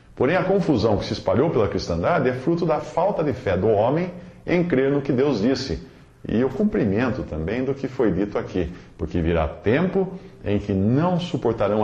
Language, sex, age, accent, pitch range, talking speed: Portuguese, male, 50-69, Brazilian, 100-160 Hz, 195 wpm